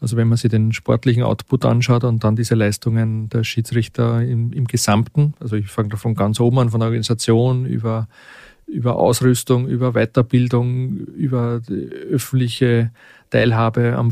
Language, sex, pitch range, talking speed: German, male, 115-125 Hz, 160 wpm